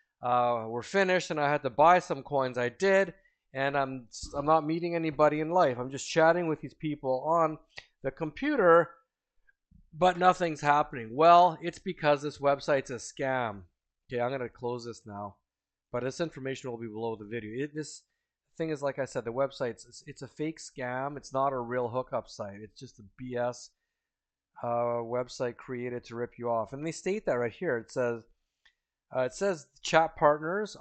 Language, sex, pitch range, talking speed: English, male, 120-155 Hz, 190 wpm